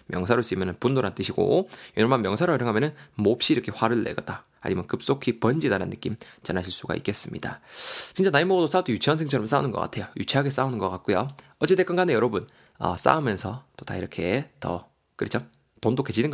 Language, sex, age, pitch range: Korean, male, 20-39, 110-150 Hz